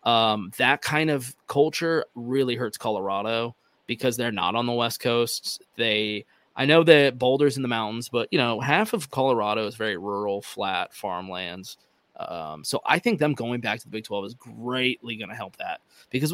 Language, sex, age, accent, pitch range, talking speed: English, male, 20-39, American, 110-140 Hz, 190 wpm